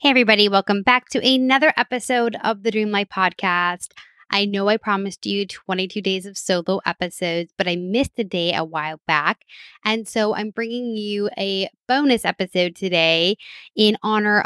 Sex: female